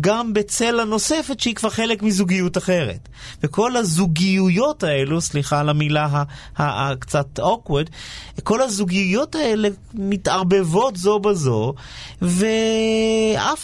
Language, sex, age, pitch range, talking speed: Hebrew, male, 30-49, 140-215 Hz, 115 wpm